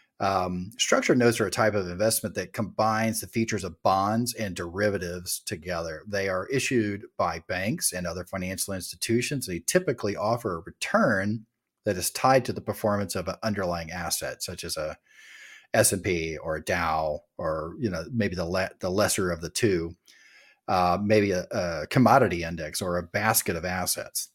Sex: male